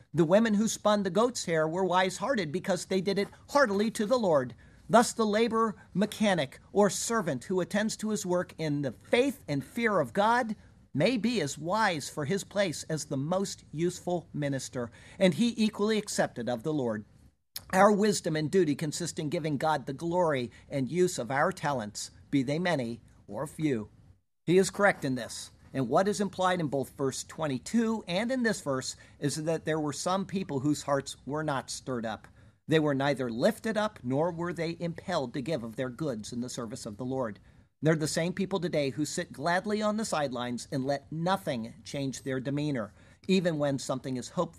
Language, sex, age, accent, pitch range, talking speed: English, male, 50-69, American, 135-195 Hz, 195 wpm